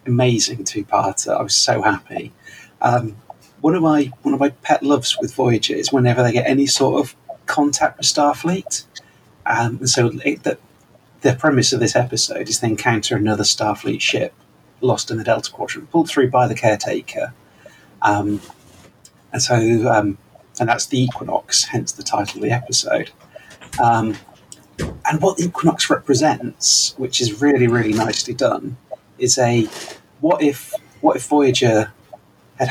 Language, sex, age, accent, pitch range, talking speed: English, male, 30-49, British, 110-130 Hz, 155 wpm